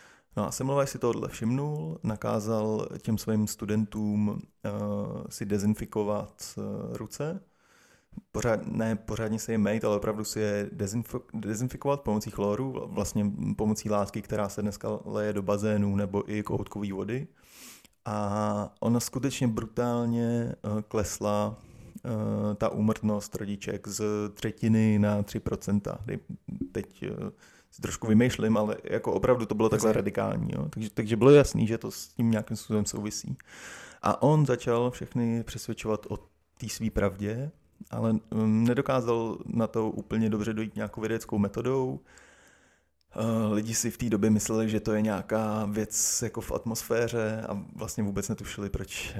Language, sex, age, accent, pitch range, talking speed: Czech, male, 20-39, native, 105-115 Hz, 145 wpm